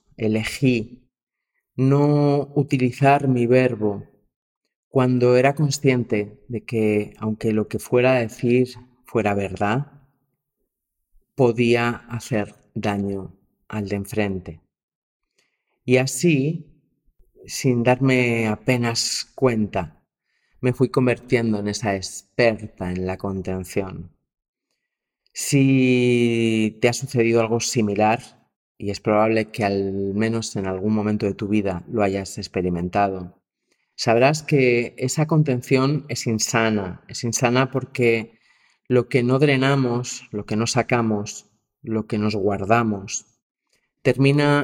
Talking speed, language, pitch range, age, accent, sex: 110 wpm, Spanish, 105-130 Hz, 30-49, Spanish, male